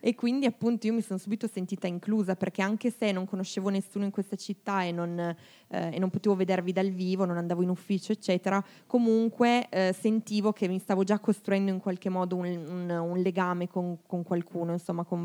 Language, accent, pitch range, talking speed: Italian, native, 180-200 Hz, 195 wpm